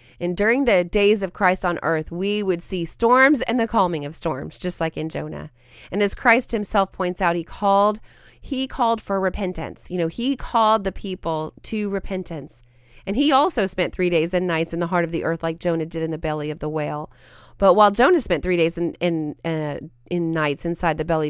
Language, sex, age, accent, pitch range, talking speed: English, female, 30-49, American, 155-200 Hz, 225 wpm